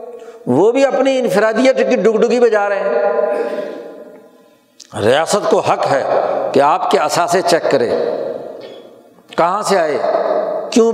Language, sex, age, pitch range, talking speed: Urdu, male, 60-79, 180-235 Hz, 135 wpm